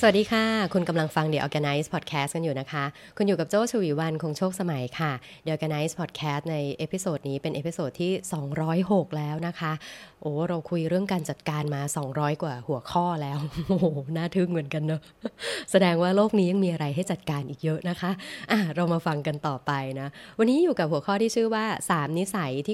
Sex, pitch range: female, 145-185 Hz